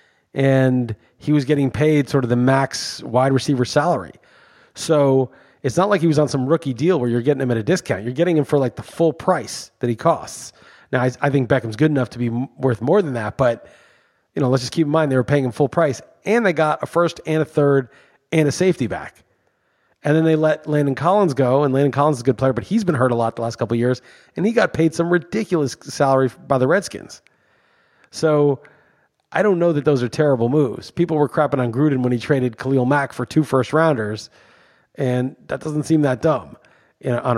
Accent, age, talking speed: American, 30-49, 235 wpm